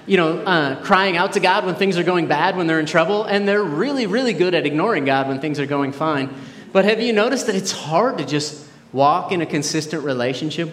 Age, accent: 30-49, American